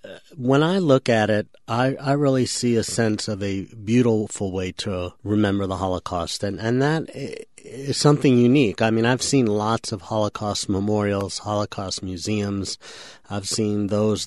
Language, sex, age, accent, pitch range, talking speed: English, male, 40-59, American, 100-115 Hz, 160 wpm